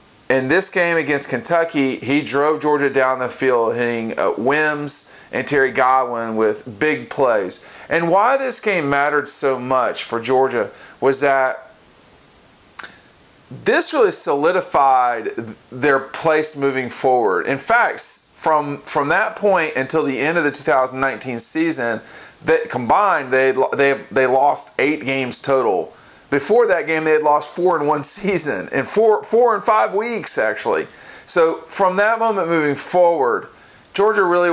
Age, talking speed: 40-59, 145 wpm